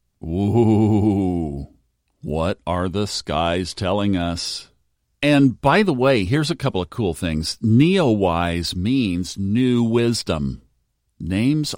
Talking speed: 110 wpm